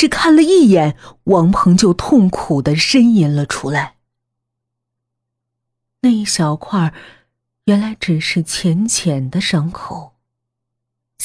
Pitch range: 125-195 Hz